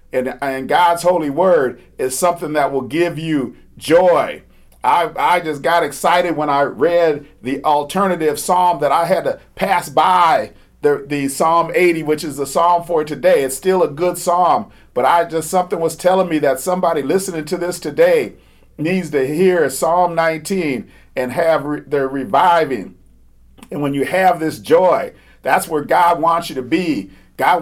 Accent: American